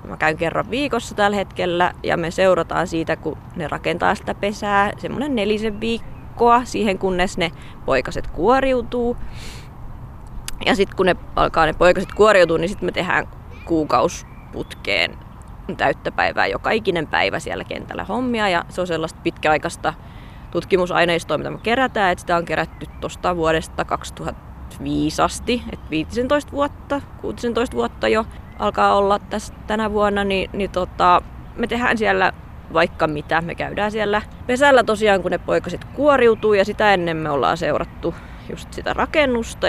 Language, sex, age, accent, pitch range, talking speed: Finnish, female, 20-39, native, 165-230 Hz, 150 wpm